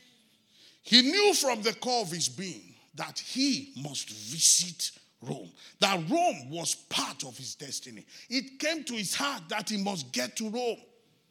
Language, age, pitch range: English, 50-69, 190-260 Hz